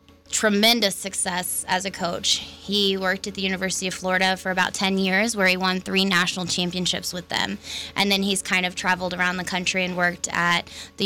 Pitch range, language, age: 180-195 Hz, English, 20-39